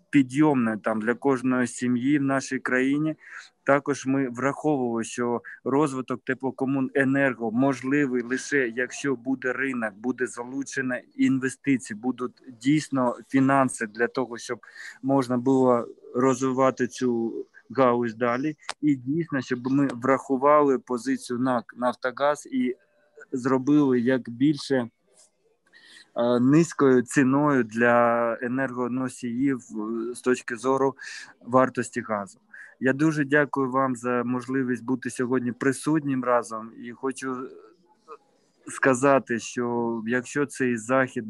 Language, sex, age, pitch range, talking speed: Ukrainian, male, 20-39, 125-135 Hz, 105 wpm